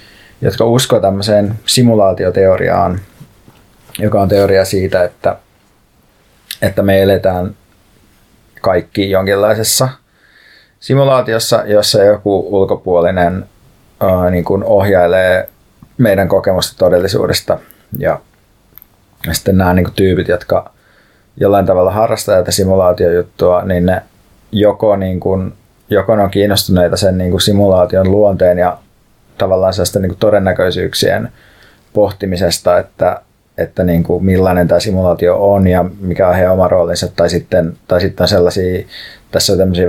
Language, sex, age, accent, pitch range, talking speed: Finnish, male, 30-49, native, 90-105 Hz, 120 wpm